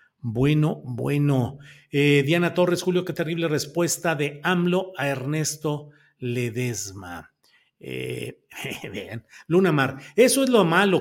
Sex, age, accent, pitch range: male, 50-69, Mexican, 130-185 Hz